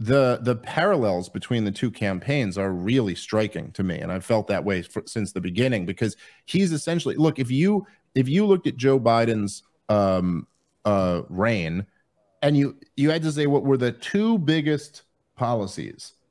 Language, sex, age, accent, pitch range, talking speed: English, male, 40-59, American, 100-135 Hz, 175 wpm